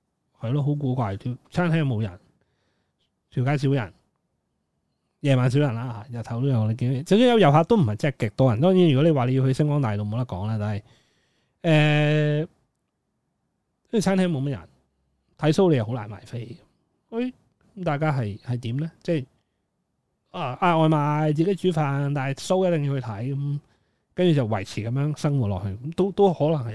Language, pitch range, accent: Chinese, 120-165 Hz, native